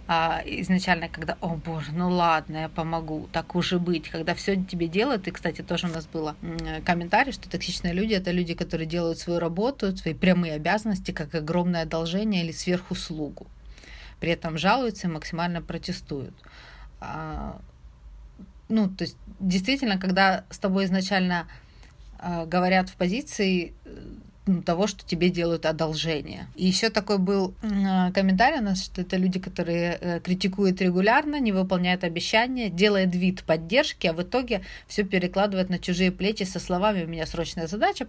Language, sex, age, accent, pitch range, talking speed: Ukrainian, female, 30-49, native, 170-195 Hz, 150 wpm